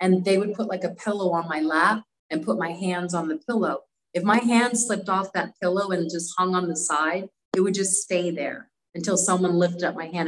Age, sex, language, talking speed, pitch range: 30-49, female, English, 240 wpm, 165-210 Hz